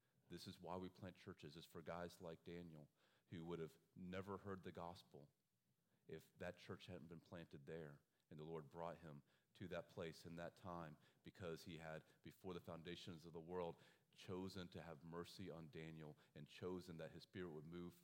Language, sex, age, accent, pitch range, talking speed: English, male, 40-59, American, 85-105 Hz, 195 wpm